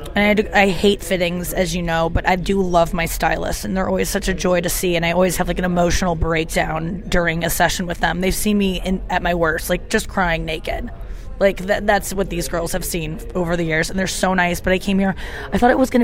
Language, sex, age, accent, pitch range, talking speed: English, female, 20-39, American, 175-205 Hz, 265 wpm